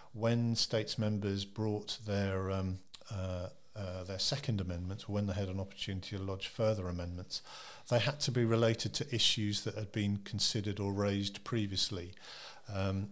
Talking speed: 160 wpm